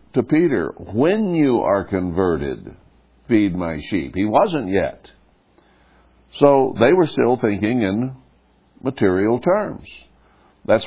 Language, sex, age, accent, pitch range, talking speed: English, male, 60-79, American, 85-120 Hz, 115 wpm